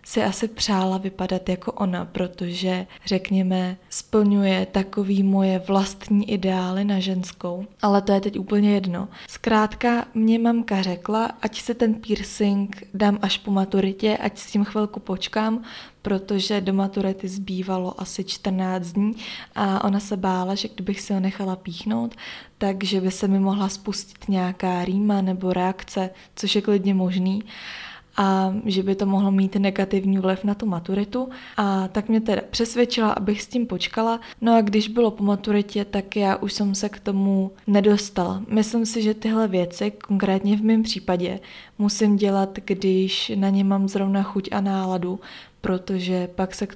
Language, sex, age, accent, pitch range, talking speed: Czech, female, 20-39, native, 190-210 Hz, 160 wpm